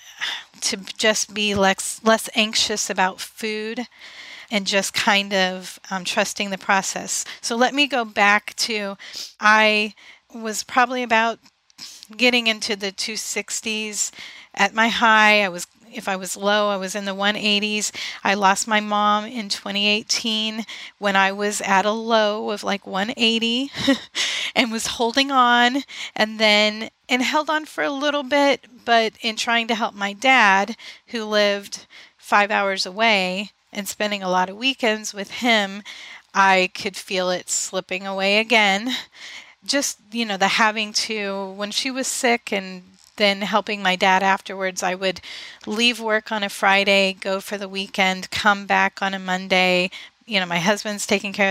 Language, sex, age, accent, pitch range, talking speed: English, female, 30-49, American, 195-225 Hz, 160 wpm